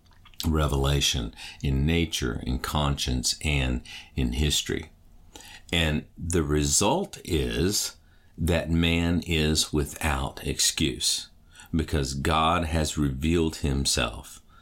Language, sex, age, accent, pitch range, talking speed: English, male, 50-69, American, 75-85 Hz, 90 wpm